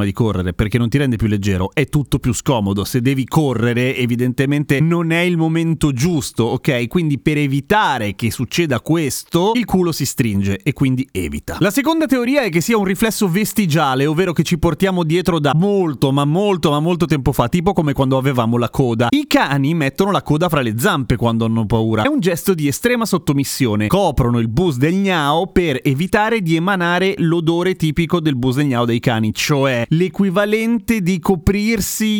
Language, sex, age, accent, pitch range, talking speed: Italian, male, 30-49, native, 130-190 Hz, 190 wpm